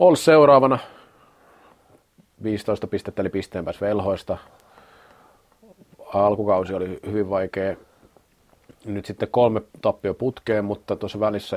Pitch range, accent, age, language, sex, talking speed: 90-110 Hz, native, 30-49, Finnish, male, 105 wpm